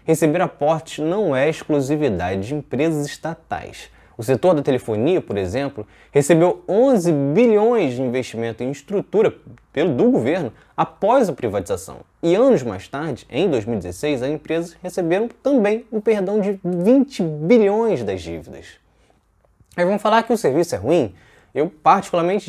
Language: Portuguese